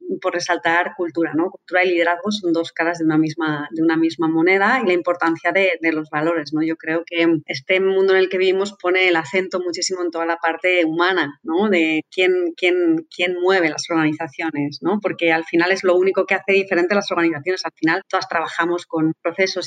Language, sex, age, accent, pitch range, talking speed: Spanish, female, 30-49, Spanish, 170-205 Hz, 215 wpm